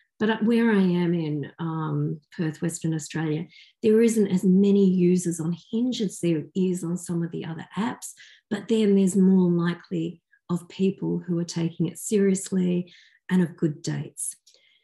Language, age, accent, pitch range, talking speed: English, 40-59, Australian, 165-210 Hz, 165 wpm